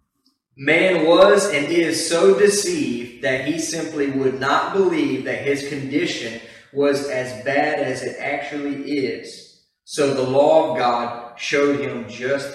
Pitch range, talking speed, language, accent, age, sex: 130-170 Hz, 145 wpm, English, American, 30-49, male